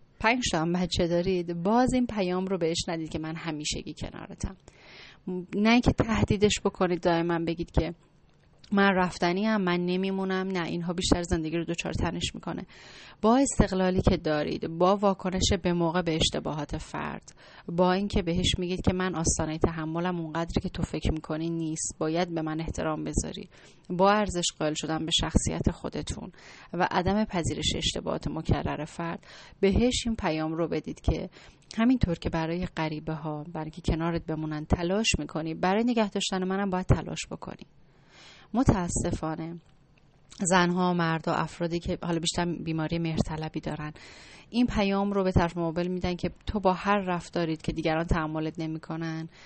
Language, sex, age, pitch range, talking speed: Persian, female, 30-49, 160-185 Hz, 155 wpm